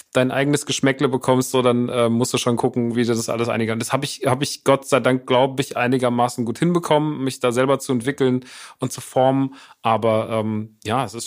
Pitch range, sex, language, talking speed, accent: 115-135 Hz, male, German, 220 wpm, German